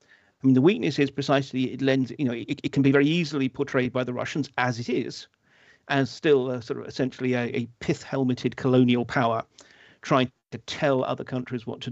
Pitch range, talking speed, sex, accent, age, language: 125-155 Hz, 200 wpm, male, British, 50-69, English